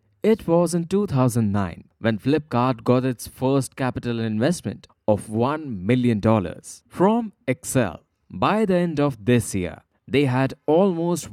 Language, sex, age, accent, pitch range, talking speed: English, male, 20-39, Indian, 115-155 Hz, 130 wpm